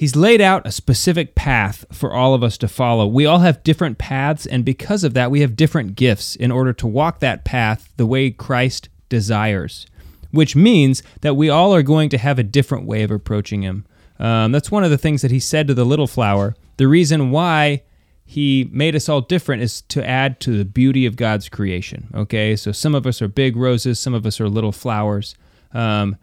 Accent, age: American, 30-49